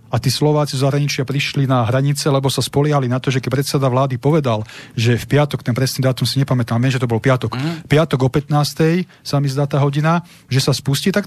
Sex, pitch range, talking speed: male, 125-150 Hz, 230 wpm